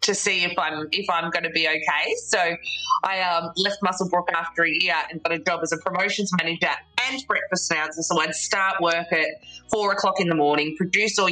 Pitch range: 165-210 Hz